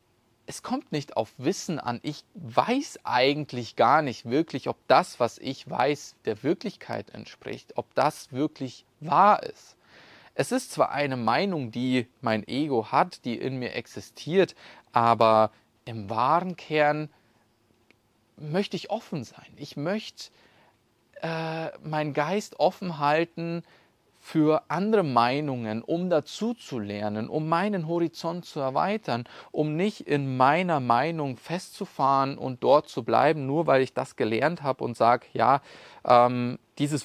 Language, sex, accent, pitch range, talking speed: German, male, German, 120-170 Hz, 140 wpm